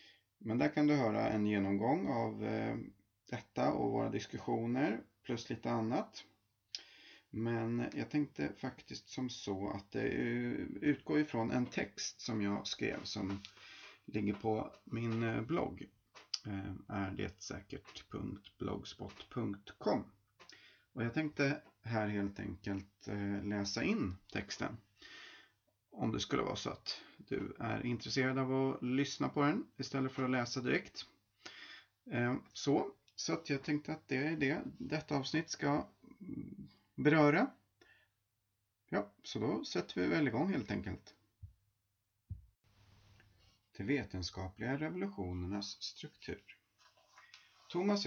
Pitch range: 100-135 Hz